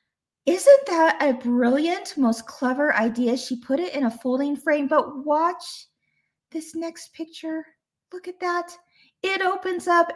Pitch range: 230-320 Hz